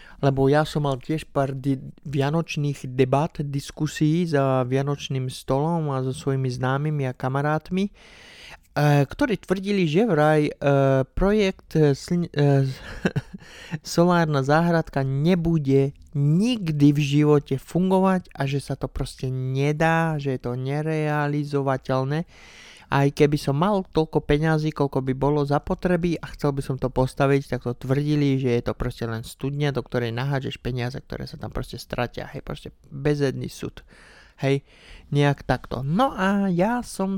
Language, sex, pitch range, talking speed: Slovak, male, 135-160 Hz, 140 wpm